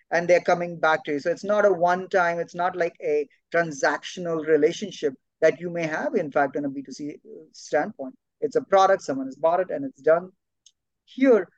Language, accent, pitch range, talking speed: English, Indian, 165-225 Hz, 195 wpm